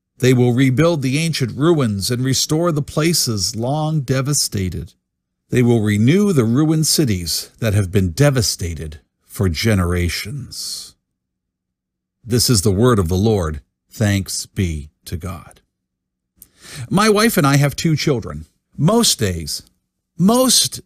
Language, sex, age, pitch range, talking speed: English, male, 50-69, 100-165 Hz, 130 wpm